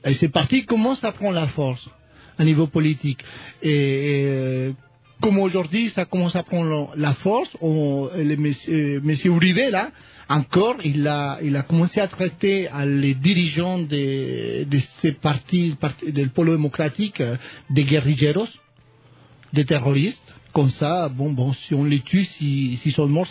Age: 40-59